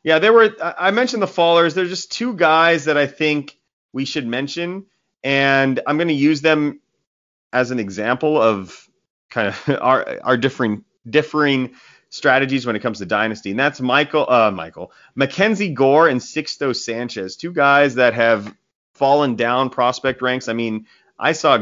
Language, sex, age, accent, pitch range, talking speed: English, male, 30-49, American, 120-150 Hz, 170 wpm